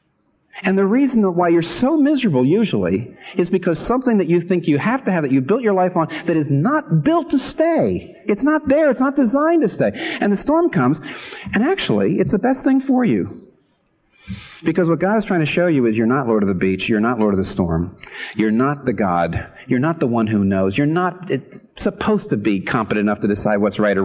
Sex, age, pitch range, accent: male, 50-69, 115-180 Hz, American